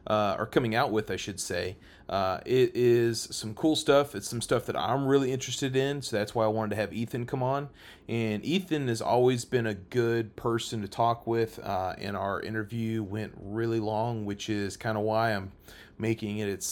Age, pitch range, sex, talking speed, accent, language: 30-49, 105-125 Hz, male, 210 wpm, American, English